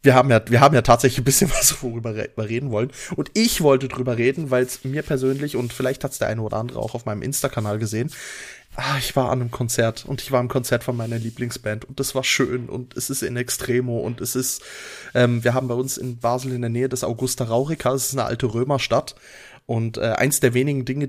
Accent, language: German, German